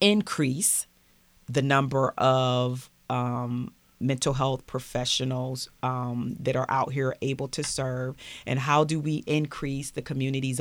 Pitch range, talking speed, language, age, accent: 130-140 Hz, 130 wpm, English, 40-59, American